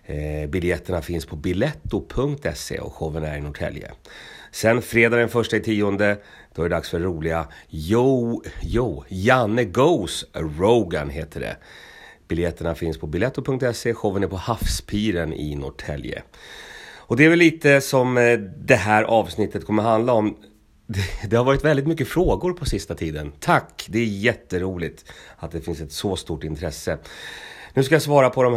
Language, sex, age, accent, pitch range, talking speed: Swedish, male, 30-49, native, 90-125 Hz, 165 wpm